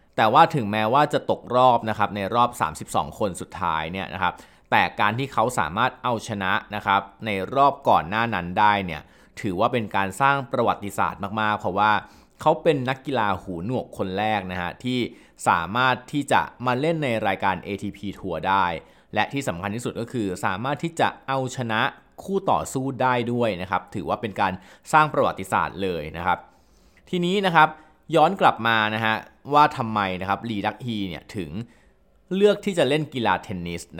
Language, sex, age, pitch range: Thai, male, 20-39, 95-135 Hz